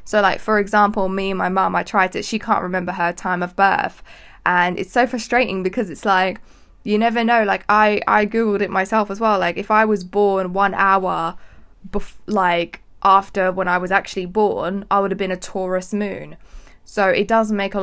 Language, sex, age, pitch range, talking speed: English, female, 10-29, 185-225 Hz, 210 wpm